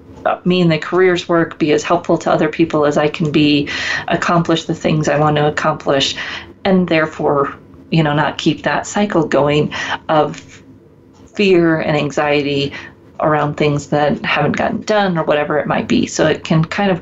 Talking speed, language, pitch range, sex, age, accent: 180 wpm, English, 150-175 Hz, female, 40-59, American